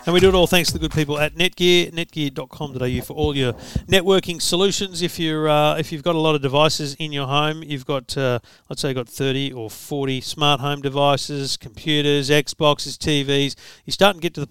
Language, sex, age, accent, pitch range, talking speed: English, male, 40-59, Australian, 130-155 Hz, 220 wpm